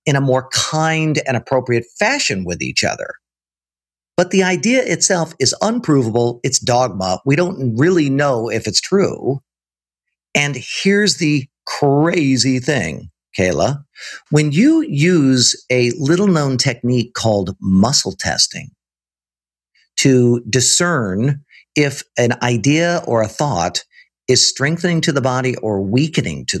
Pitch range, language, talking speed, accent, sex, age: 115-155 Hz, English, 130 wpm, American, male, 50-69